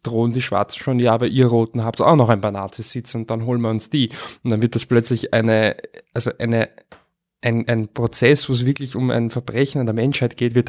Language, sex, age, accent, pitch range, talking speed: German, male, 20-39, German, 115-135 Hz, 240 wpm